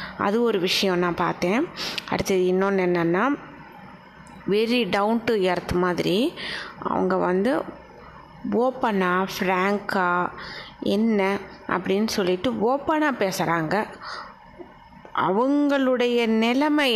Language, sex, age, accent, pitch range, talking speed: Tamil, female, 20-39, native, 185-225 Hz, 85 wpm